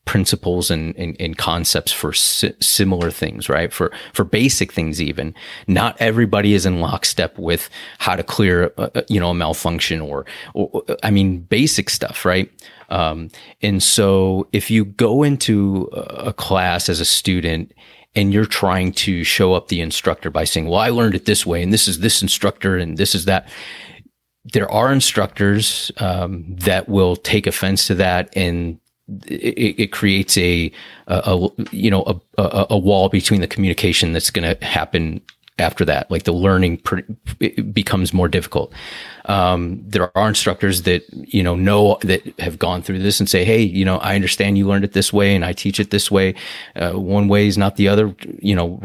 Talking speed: 190 wpm